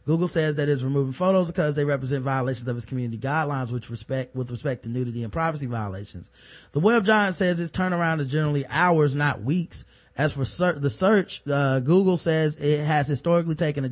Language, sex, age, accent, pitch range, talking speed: English, male, 20-39, American, 125-155 Hz, 205 wpm